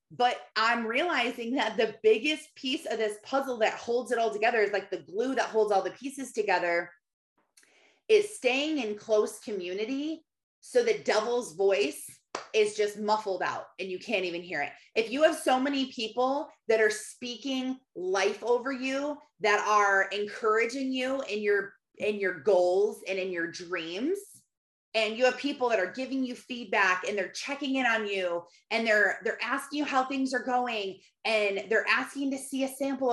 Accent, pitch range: American, 205-260 Hz